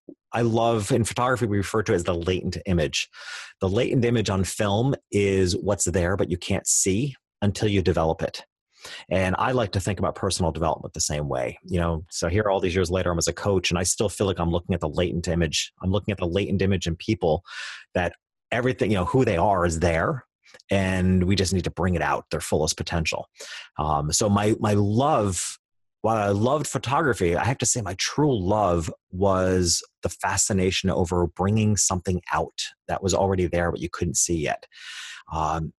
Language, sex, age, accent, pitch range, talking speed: English, male, 30-49, American, 85-105 Hz, 205 wpm